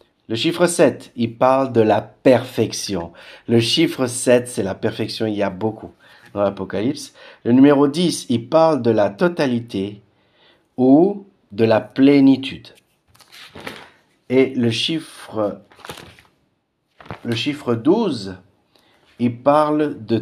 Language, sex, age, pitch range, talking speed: French, male, 50-69, 110-145 Hz, 120 wpm